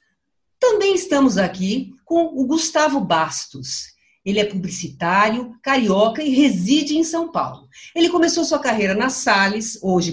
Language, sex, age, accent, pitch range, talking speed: Portuguese, female, 50-69, Brazilian, 185-270 Hz, 135 wpm